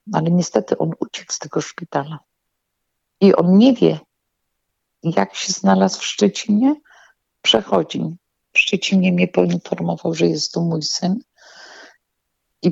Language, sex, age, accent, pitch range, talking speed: Polish, female, 50-69, native, 175-230 Hz, 125 wpm